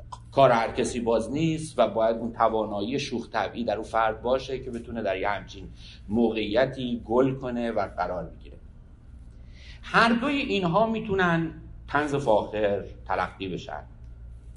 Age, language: 50-69, Persian